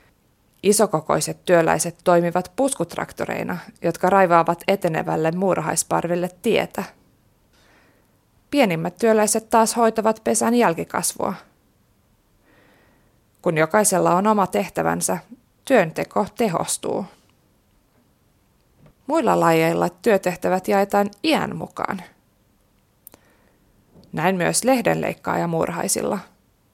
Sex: female